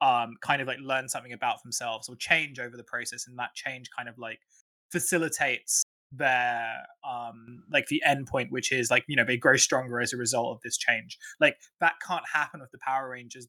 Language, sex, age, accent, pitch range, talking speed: English, male, 20-39, British, 125-165 Hz, 215 wpm